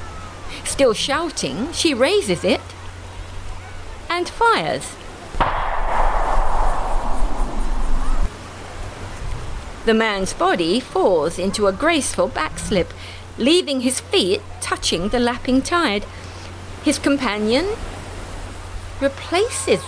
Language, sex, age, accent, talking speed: English, female, 50-69, British, 75 wpm